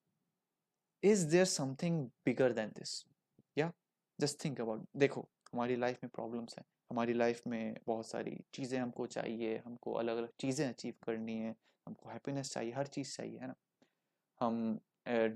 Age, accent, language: 20-39, native, Hindi